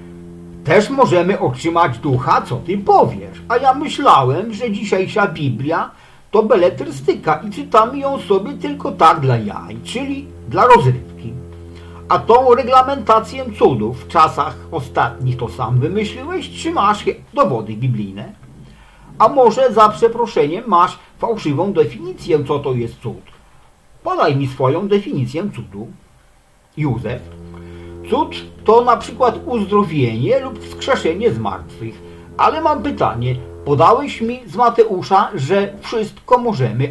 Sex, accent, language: male, Polish, English